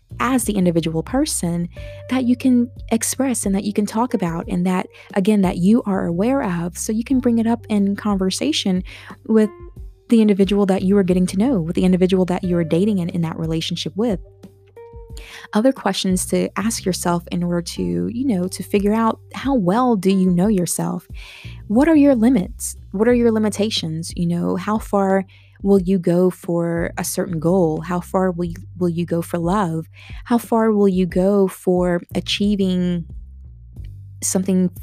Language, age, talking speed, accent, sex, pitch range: English, 20-39, 180 wpm, American, female, 170-205 Hz